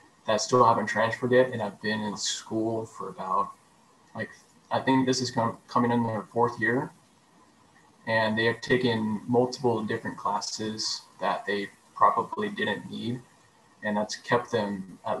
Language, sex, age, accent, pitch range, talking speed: English, male, 20-39, American, 105-130 Hz, 155 wpm